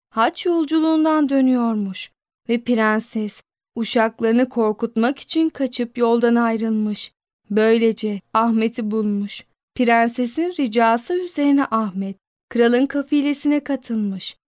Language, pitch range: Turkish, 220-265 Hz